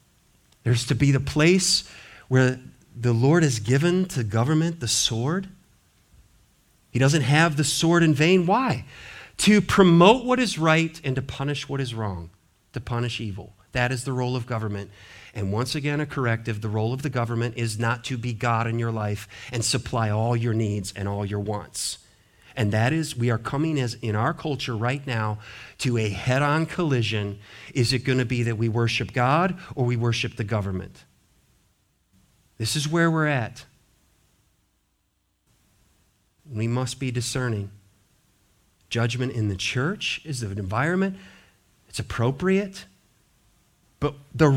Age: 40-59